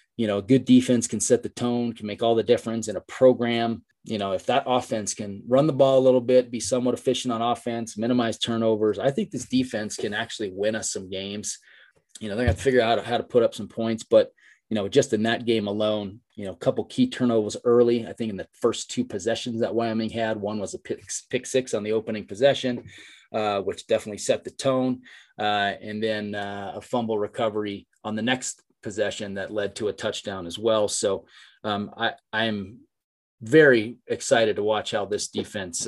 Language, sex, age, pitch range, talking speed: English, male, 30-49, 105-130 Hz, 215 wpm